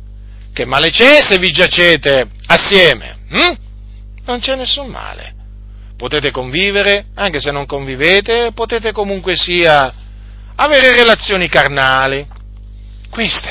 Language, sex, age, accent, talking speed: Italian, male, 40-59, native, 105 wpm